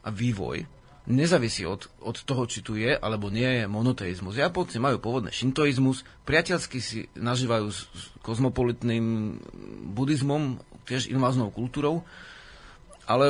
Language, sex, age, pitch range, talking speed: Slovak, male, 40-59, 110-130 Hz, 125 wpm